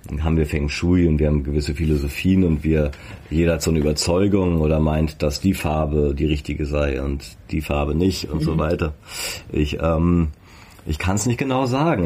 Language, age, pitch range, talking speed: German, 30-49, 75-90 Hz, 195 wpm